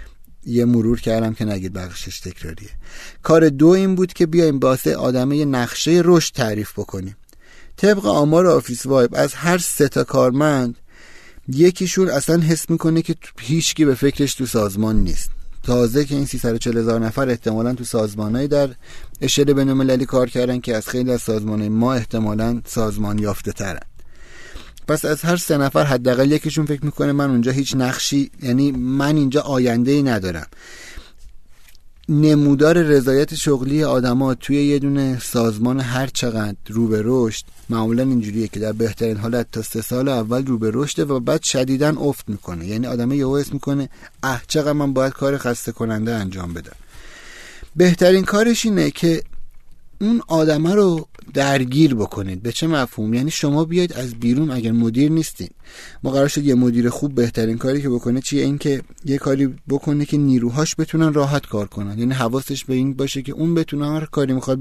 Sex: male